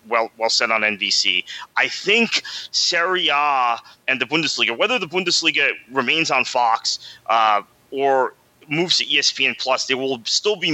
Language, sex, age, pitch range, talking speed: English, male, 30-49, 110-145 Hz, 155 wpm